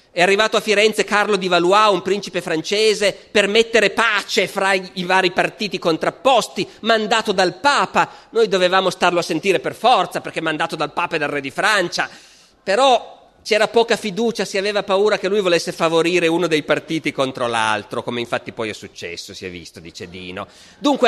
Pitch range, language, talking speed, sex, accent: 175-250 Hz, Italian, 185 wpm, male, native